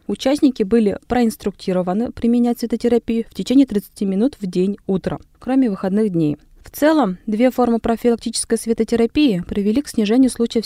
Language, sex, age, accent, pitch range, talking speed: Russian, female, 20-39, native, 195-235 Hz, 140 wpm